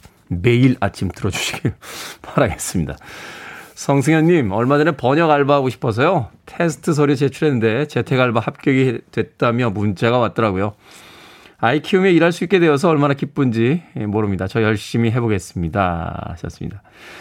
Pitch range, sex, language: 105-150 Hz, male, Korean